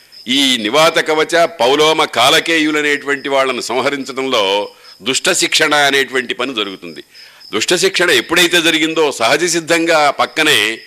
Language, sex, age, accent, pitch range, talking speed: Telugu, male, 50-69, native, 125-165 Hz, 105 wpm